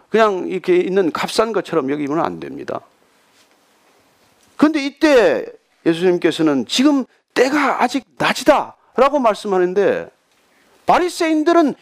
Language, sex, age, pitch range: Korean, male, 40-59, 195-280 Hz